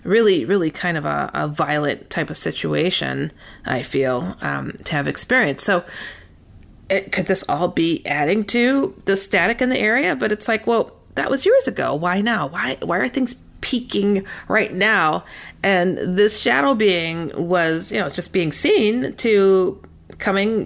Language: English